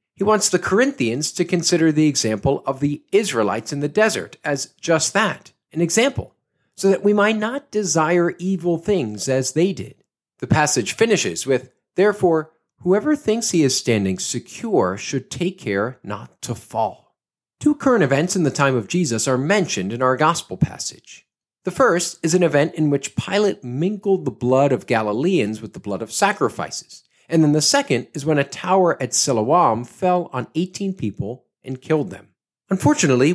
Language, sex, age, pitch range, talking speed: English, male, 40-59, 125-190 Hz, 175 wpm